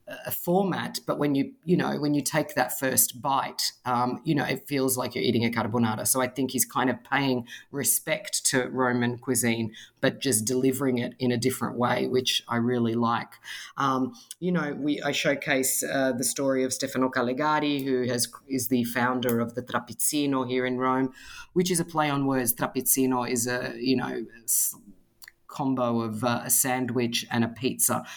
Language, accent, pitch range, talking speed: English, Australian, 120-135 Hz, 185 wpm